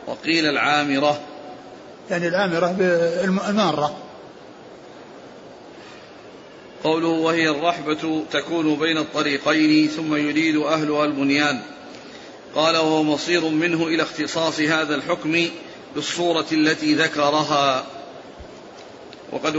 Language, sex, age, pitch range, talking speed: Arabic, male, 40-59, 150-165 Hz, 85 wpm